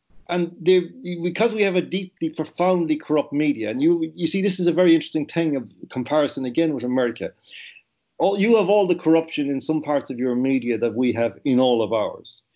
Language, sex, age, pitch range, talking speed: English, male, 50-69, 120-165 Hz, 200 wpm